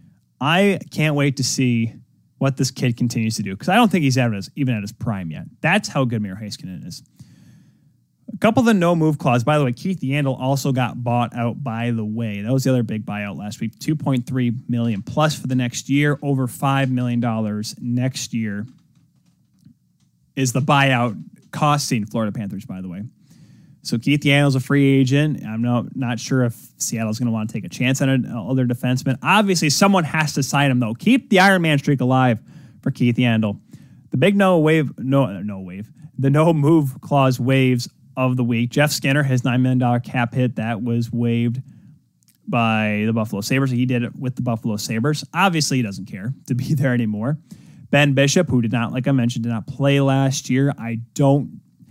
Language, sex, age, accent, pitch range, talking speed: English, male, 20-39, American, 120-145 Hz, 205 wpm